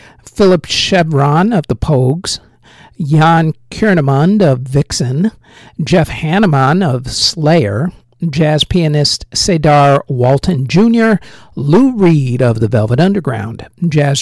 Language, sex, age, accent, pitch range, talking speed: English, male, 50-69, American, 125-170 Hz, 105 wpm